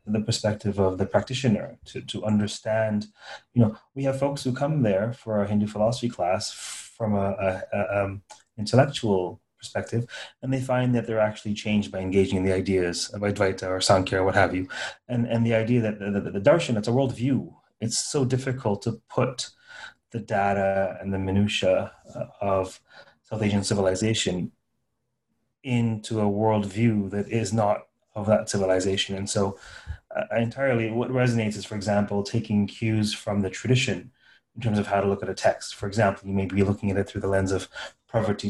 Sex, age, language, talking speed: male, 30-49, English, 185 wpm